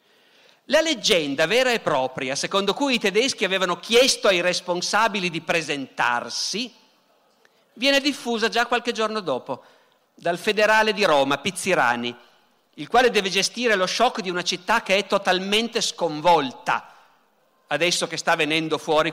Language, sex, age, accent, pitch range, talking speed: Italian, male, 50-69, native, 160-225 Hz, 140 wpm